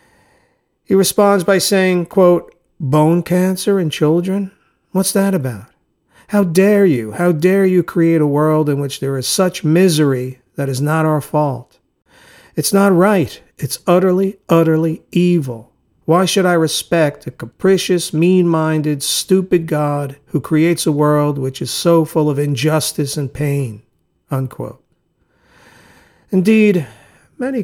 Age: 50-69